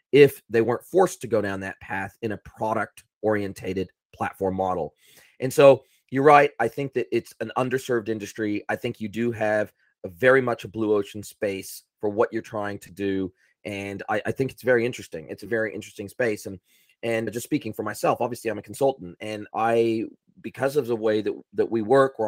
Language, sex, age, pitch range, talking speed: English, male, 30-49, 100-120 Hz, 205 wpm